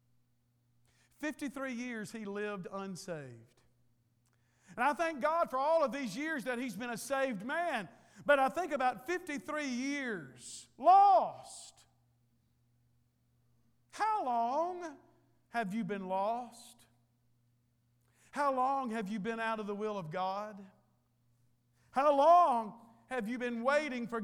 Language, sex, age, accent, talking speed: English, male, 50-69, American, 125 wpm